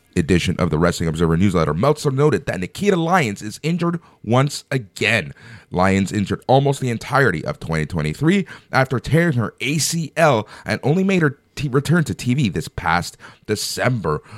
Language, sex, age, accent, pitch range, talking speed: English, male, 30-49, American, 90-145 Hz, 150 wpm